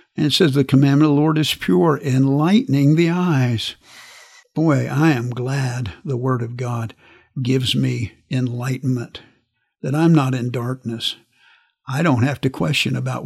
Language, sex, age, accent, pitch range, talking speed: English, male, 50-69, American, 130-150 Hz, 160 wpm